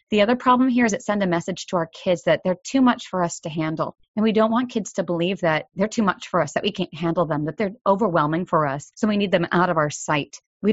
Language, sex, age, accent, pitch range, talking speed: English, female, 30-49, American, 160-210 Hz, 290 wpm